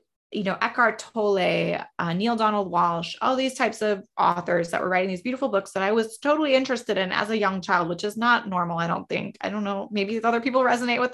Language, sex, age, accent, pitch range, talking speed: English, female, 20-39, American, 190-245 Hz, 235 wpm